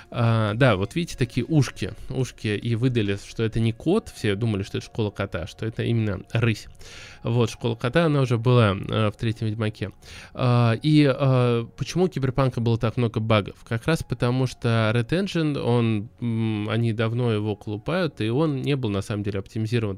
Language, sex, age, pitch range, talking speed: Russian, male, 20-39, 110-125 Hz, 190 wpm